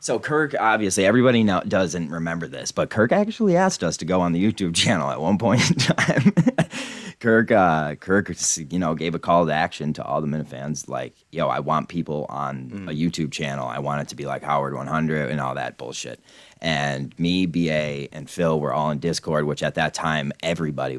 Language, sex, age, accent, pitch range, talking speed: English, male, 30-49, American, 75-95 Hz, 210 wpm